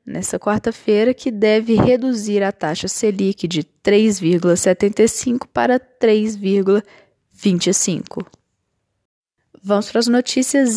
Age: 10-29